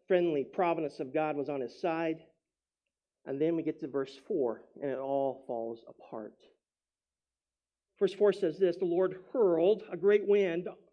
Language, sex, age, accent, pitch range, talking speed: English, male, 40-59, American, 155-215 Hz, 165 wpm